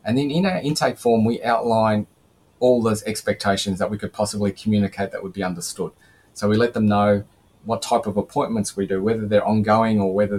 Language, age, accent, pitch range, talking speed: English, 20-39, Australian, 100-125 Hz, 210 wpm